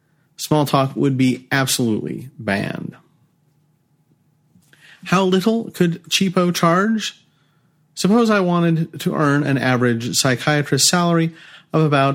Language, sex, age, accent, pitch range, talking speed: English, male, 40-59, American, 130-165 Hz, 110 wpm